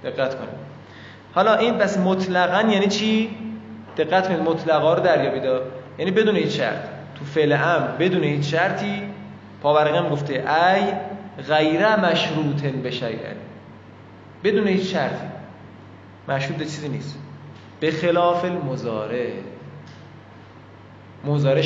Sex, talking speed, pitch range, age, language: male, 120 wpm, 130-180 Hz, 20-39, Persian